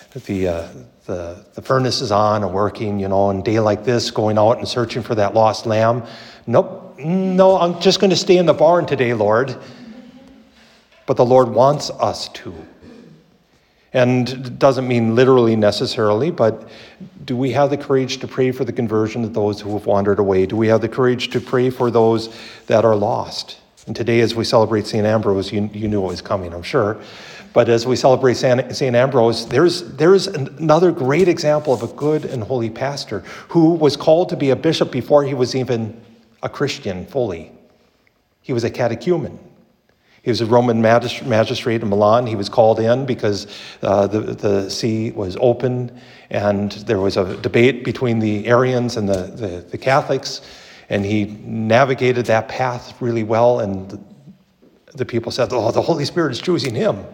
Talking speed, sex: 185 wpm, male